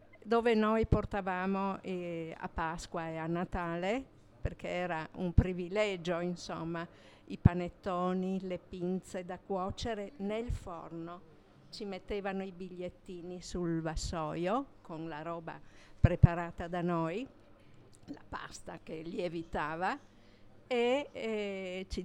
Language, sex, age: Italian, female, 50-69